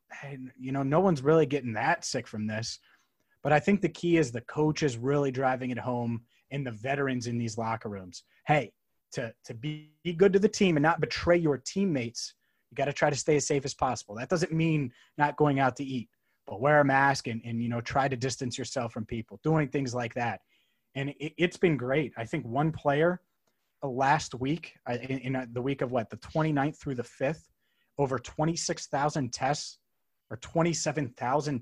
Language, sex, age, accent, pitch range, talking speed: English, male, 30-49, American, 125-150 Hz, 205 wpm